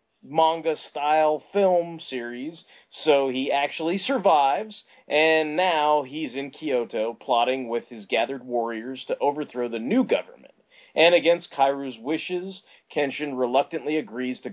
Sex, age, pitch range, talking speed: male, 30-49, 115-155 Hz, 125 wpm